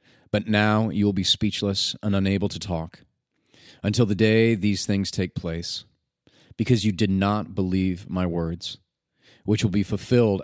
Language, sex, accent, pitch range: English, male, American, 95-110 Hz